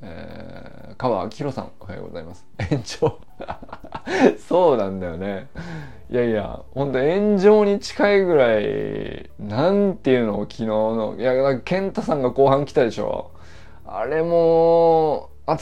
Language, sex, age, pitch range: Japanese, male, 20-39, 95-155 Hz